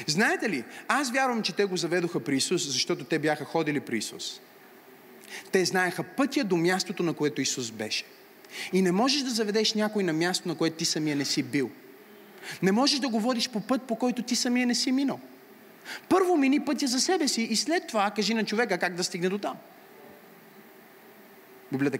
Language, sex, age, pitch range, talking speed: Bulgarian, male, 30-49, 165-230 Hz, 195 wpm